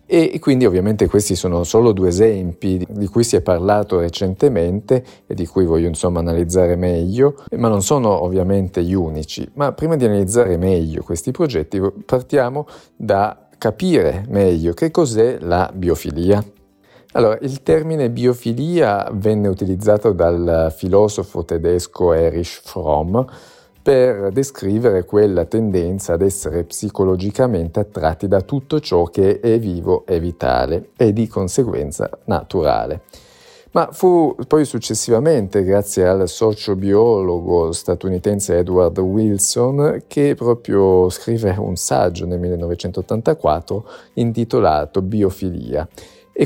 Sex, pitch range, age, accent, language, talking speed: male, 90-115 Hz, 40-59, native, Italian, 120 wpm